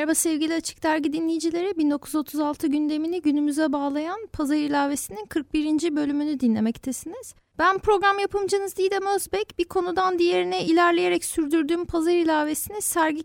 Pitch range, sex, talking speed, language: 280-350 Hz, female, 120 wpm, Turkish